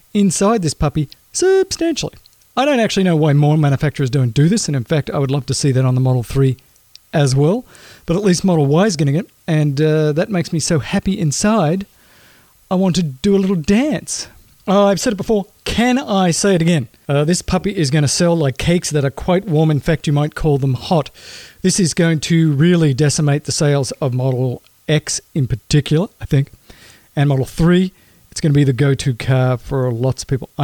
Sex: male